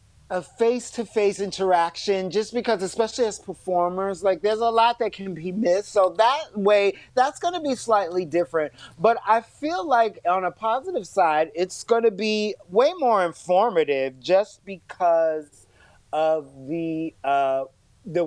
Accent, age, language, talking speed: American, 30-49, English, 150 wpm